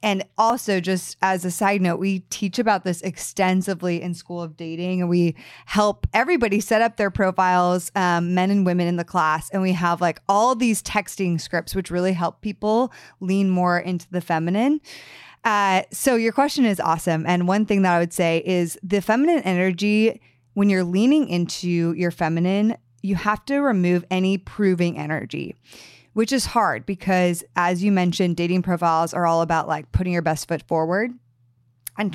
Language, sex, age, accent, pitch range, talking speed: English, female, 20-39, American, 170-200 Hz, 180 wpm